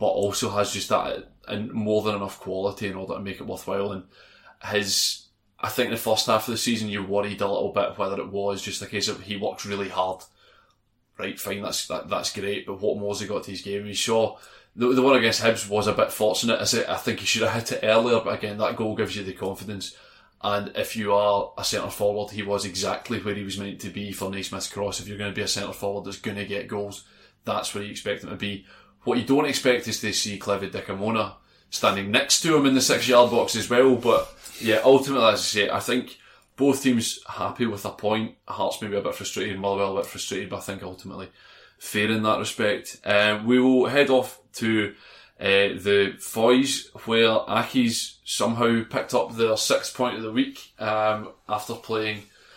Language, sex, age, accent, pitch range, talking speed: English, male, 20-39, British, 100-120 Hz, 230 wpm